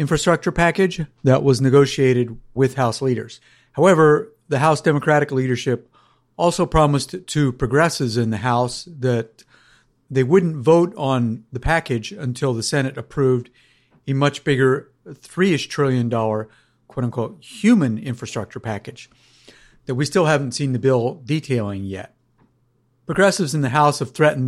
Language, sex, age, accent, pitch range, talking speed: English, male, 50-69, American, 120-150 Hz, 140 wpm